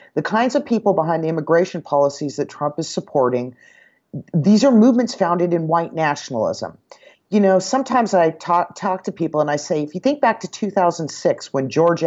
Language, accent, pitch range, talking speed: English, American, 140-195 Hz, 190 wpm